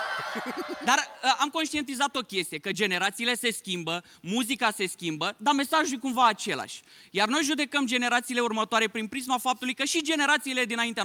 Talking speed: 165 wpm